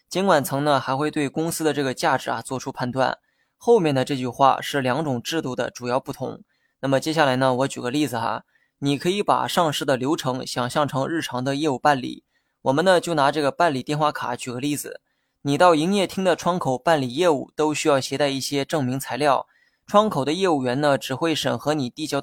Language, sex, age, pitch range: Chinese, male, 20-39, 130-160 Hz